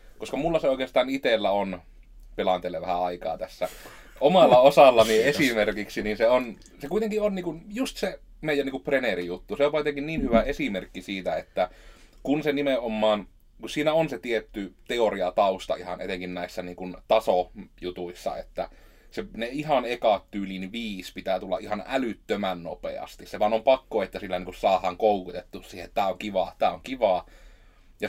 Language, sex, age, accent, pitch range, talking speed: Finnish, male, 30-49, native, 90-135 Hz, 165 wpm